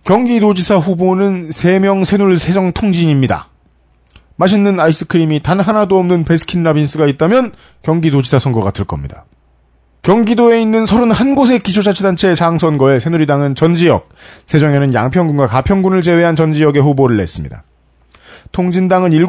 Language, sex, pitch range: Korean, male, 125-190 Hz